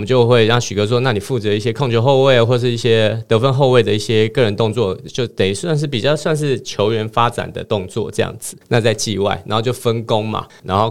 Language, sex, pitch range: Chinese, male, 95-120 Hz